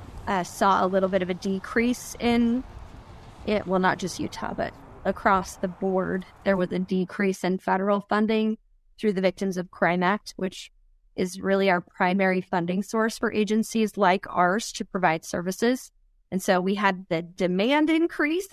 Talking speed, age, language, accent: 170 wpm, 20-39, English, American